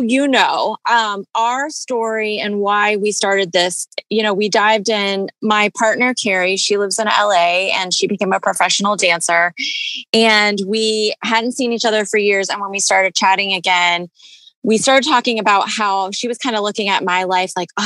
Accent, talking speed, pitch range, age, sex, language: American, 190 wpm, 185-225 Hz, 20-39, female, English